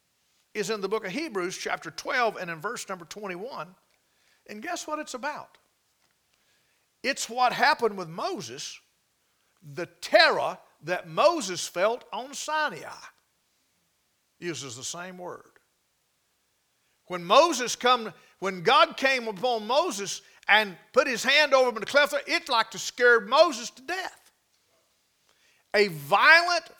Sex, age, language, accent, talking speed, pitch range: male, 50-69, English, American, 135 wpm, 220-315 Hz